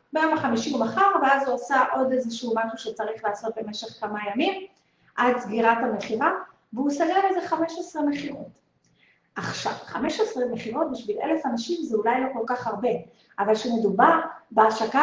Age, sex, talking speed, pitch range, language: 30-49, female, 150 wpm, 225-315 Hz, Hebrew